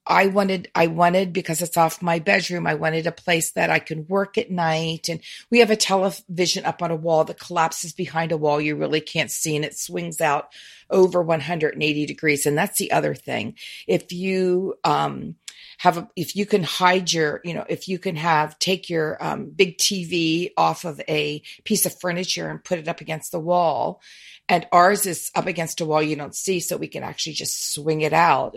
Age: 40-59